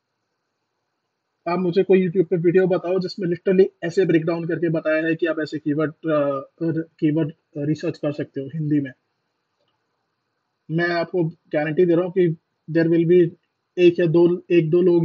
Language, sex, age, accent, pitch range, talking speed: Hindi, male, 20-39, native, 155-175 Hz, 165 wpm